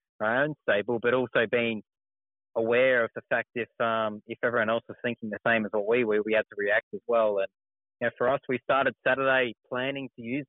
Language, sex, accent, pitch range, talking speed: English, male, Australian, 105-125 Hz, 230 wpm